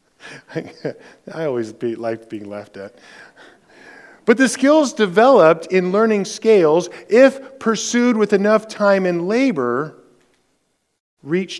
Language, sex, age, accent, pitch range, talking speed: English, male, 50-69, American, 150-200 Hz, 110 wpm